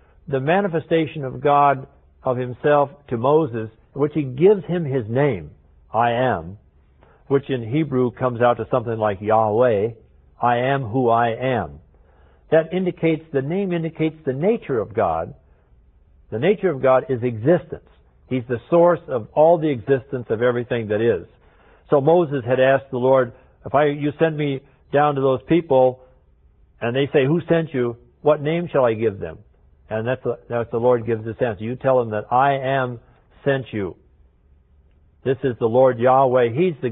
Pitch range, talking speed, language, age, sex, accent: 105-145 Hz, 175 wpm, English, 60-79, male, American